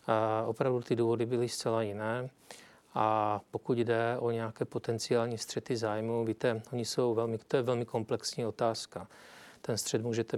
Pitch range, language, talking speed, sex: 110-115 Hz, Czech, 155 wpm, male